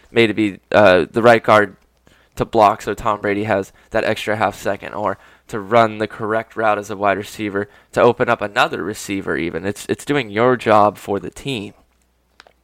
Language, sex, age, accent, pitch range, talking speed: English, male, 10-29, American, 100-120 Hz, 195 wpm